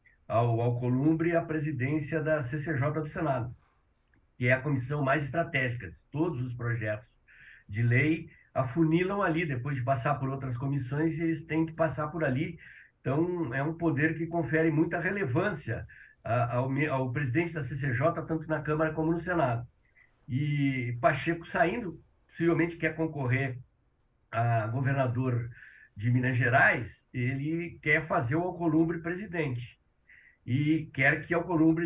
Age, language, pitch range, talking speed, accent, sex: 60-79, Portuguese, 125-165 Hz, 140 wpm, Brazilian, male